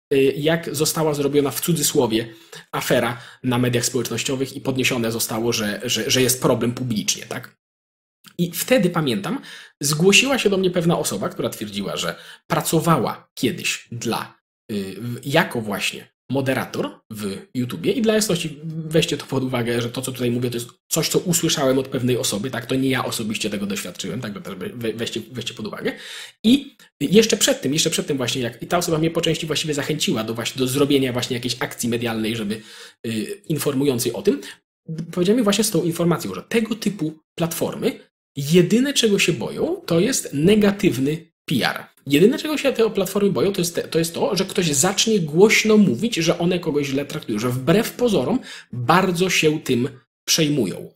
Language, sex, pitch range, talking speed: Polish, male, 125-180 Hz, 170 wpm